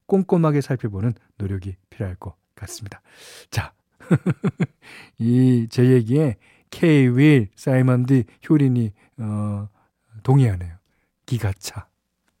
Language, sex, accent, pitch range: Korean, male, native, 115-160 Hz